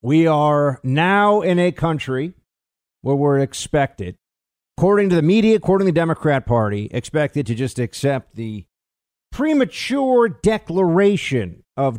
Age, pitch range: 50-69, 115-165 Hz